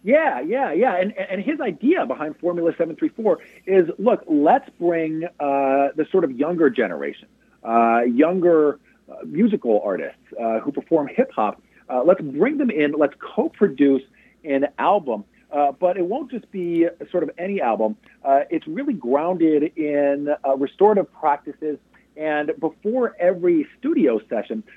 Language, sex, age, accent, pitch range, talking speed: English, male, 40-59, American, 145-210 Hz, 150 wpm